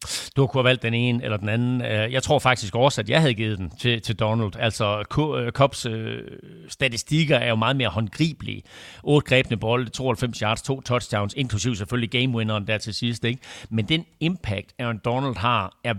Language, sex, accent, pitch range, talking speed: Danish, male, native, 110-135 Hz, 190 wpm